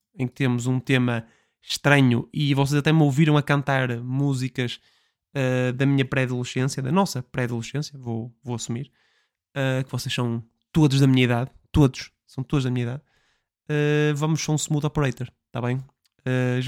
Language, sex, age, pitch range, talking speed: Portuguese, male, 20-39, 125-150 Hz, 175 wpm